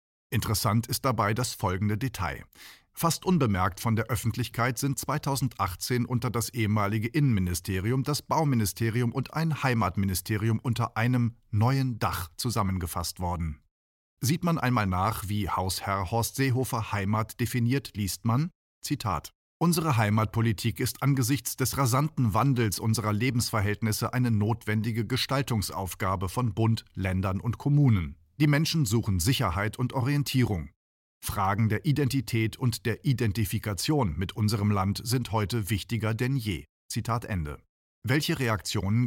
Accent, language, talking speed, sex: German, German, 125 wpm, male